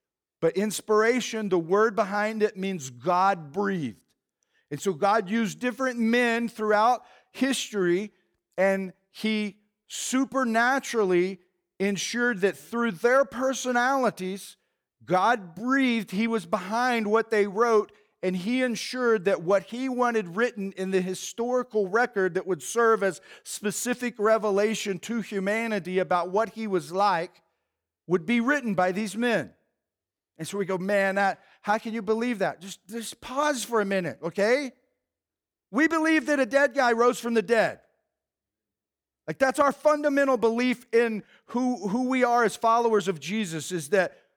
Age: 50-69